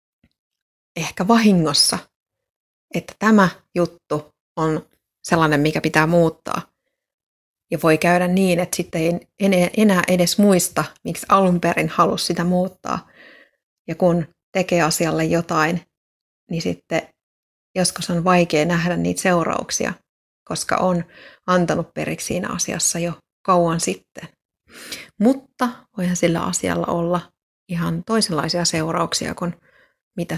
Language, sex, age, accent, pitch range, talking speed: Finnish, female, 30-49, native, 160-190 Hz, 115 wpm